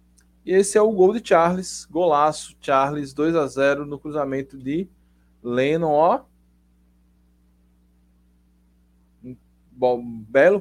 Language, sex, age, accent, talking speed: Portuguese, male, 20-39, Brazilian, 105 wpm